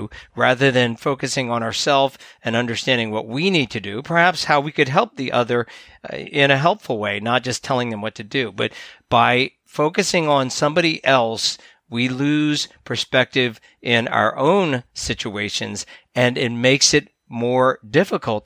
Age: 40-59